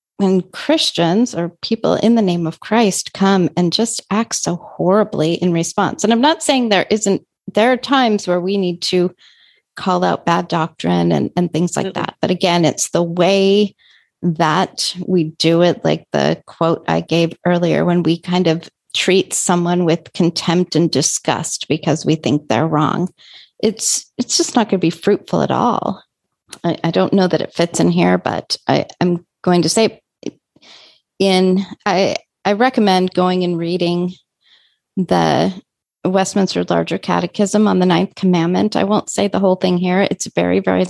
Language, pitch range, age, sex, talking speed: English, 165-195 Hz, 30-49, female, 175 wpm